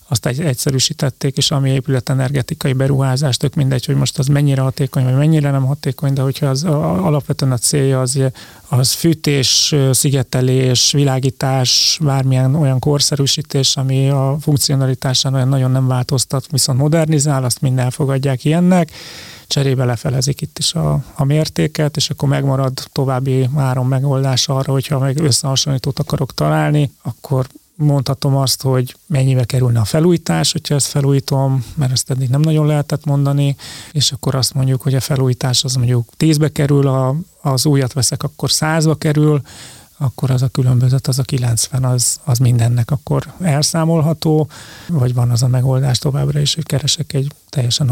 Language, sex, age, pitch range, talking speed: Hungarian, male, 30-49, 130-145 Hz, 155 wpm